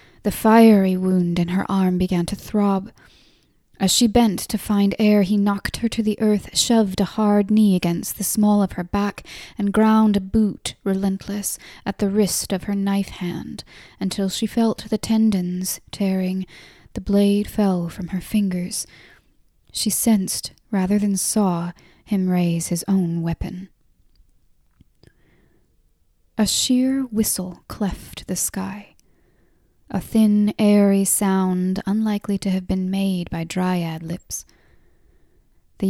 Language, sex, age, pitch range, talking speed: English, female, 10-29, 185-210 Hz, 140 wpm